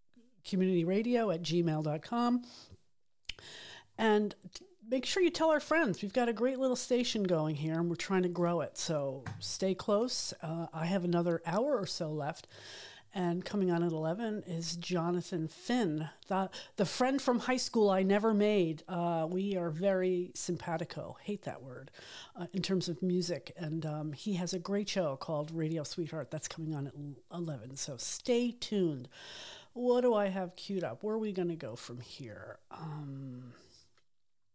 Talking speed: 170 wpm